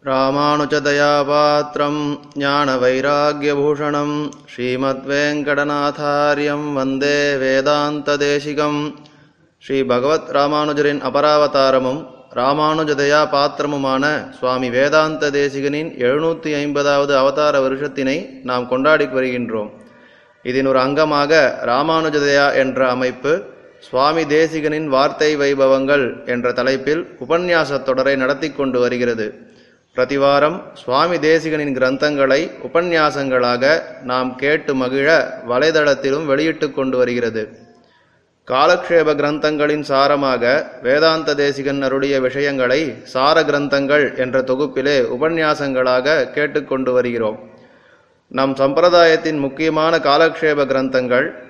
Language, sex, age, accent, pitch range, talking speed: Tamil, male, 20-39, native, 130-150 Hz, 80 wpm